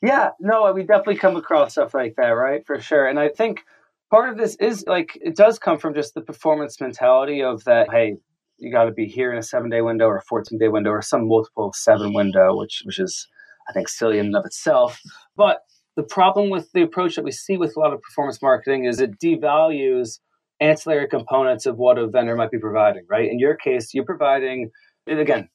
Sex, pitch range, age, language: male, 115-170 Hz, 30-49, English